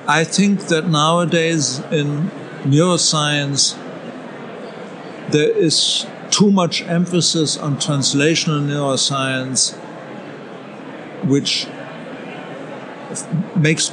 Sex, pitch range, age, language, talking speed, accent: male, 140-170 Hz, 60-79, English, 70 wpm, German